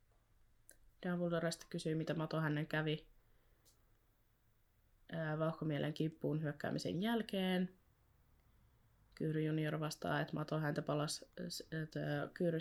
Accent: native